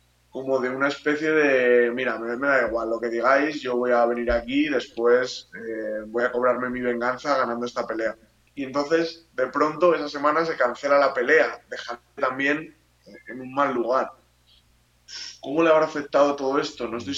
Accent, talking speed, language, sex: Spanish, 180 wpm, Spanish, male